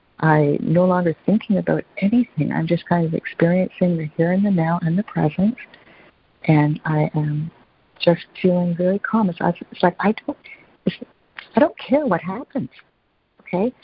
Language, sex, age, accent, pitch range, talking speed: English, female, 60-79, American, 165-200 Hz, 165 wpm